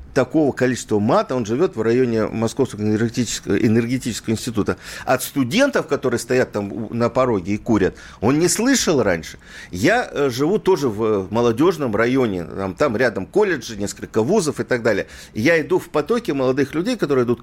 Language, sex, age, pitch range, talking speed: Russian, male, 50-69, 105-160 Hz, 160 wpm